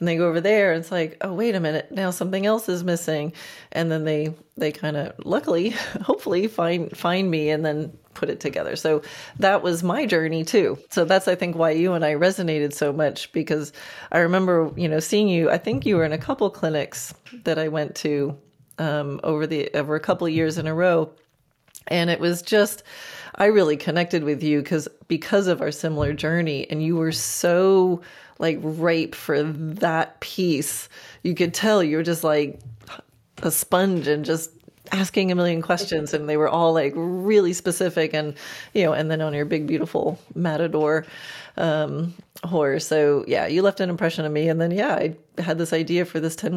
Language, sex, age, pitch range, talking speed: English, female, 30-49, 155-180 Hz, 200 wpm